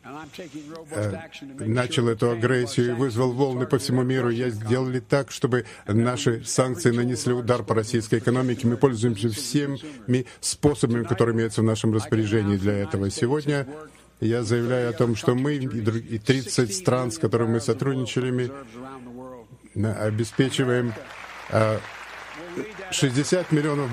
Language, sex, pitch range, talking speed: Russian, male, 115-135 Hz, 125 wpm